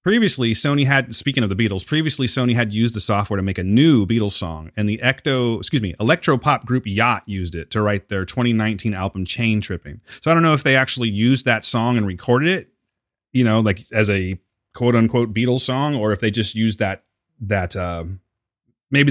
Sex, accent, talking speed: male, American, 215 wpm